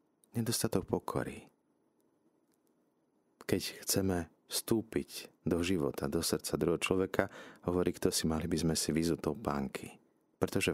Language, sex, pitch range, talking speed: Slovak, male, 75-95 Hz, 115 wpm